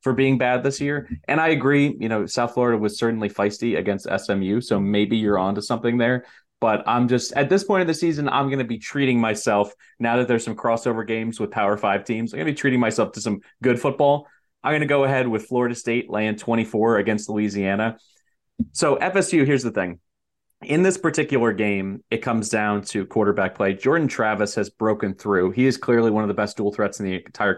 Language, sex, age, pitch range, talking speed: English, male, 30-49, 100-125 Hz, 225 wpm